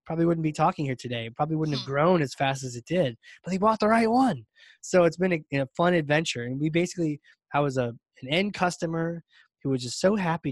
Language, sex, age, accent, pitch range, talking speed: English, male, 20-39, American, 135-185 Hz, 240 wpm